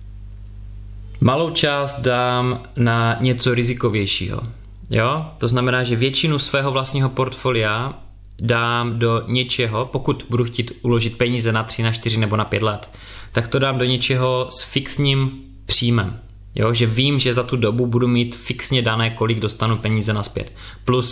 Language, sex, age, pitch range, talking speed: Czech, male, 20-39, 110-125 Hz, 155 wpm